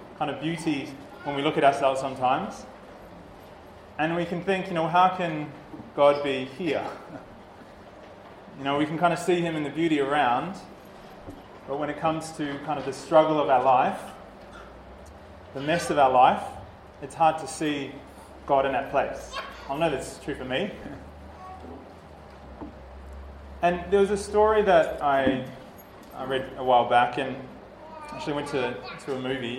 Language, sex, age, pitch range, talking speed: English, male, 20-39, 130-160 Hz, 165 wpm